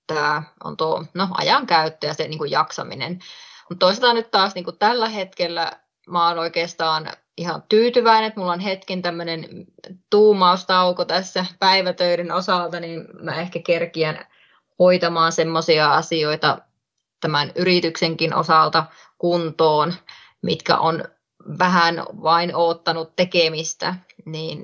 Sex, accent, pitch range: female, native, 160-185 Hz